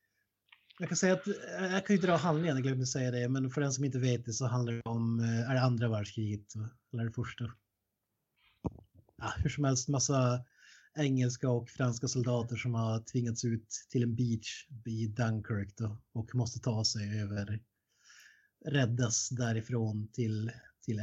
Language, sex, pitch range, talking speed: Swedish, male, 115-135 Hz, 170 wpm